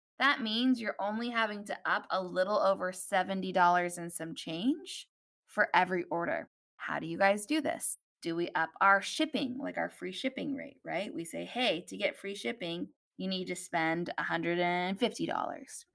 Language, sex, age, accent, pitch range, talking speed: English, female, 20-39, American, 175-225 Hz, 175 wpm